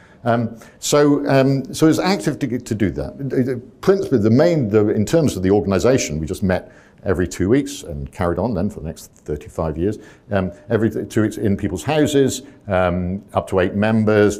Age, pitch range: 50-69, 90-125 Hz